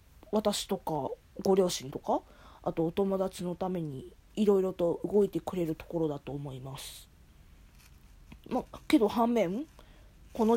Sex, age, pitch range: female, 20-39, 160-220 Hz